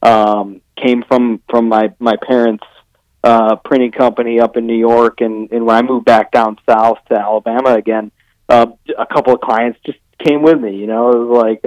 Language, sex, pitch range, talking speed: English, male, 115-140 Hz, 200 wpm